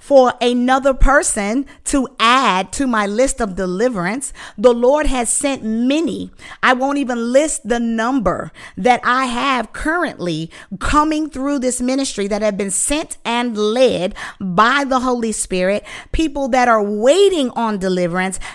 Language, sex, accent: English, female, American